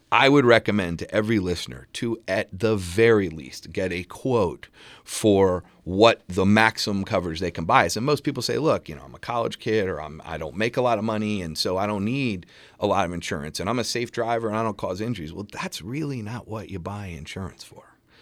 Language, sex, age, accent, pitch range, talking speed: English, male, 40-59, American, 85-110 Hz, 230 wpm